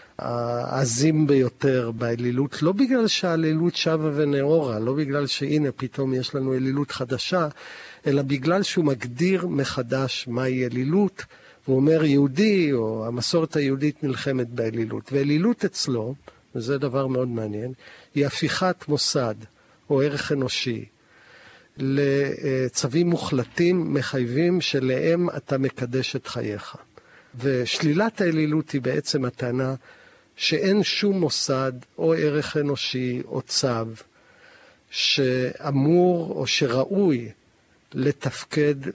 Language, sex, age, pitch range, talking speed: Hebrew, male, 50-69, 125-160 Hz, 105 wpm